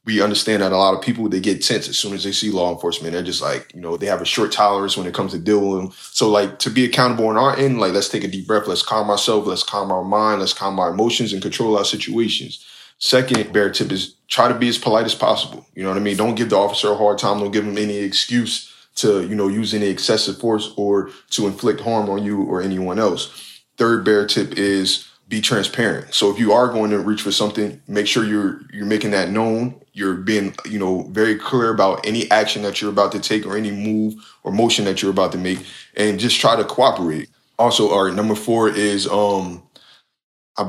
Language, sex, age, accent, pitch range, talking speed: English, male, 20-39, American, 95-110 Hz, 240 wpm